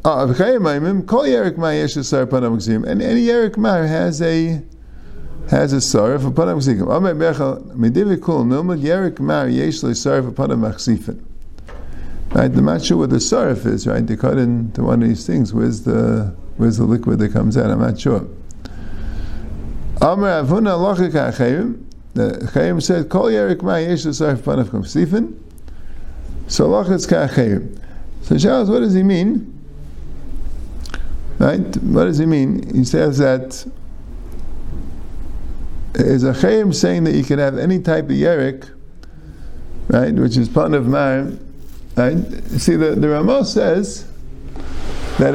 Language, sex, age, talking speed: English, male, 50-69, 100 wpm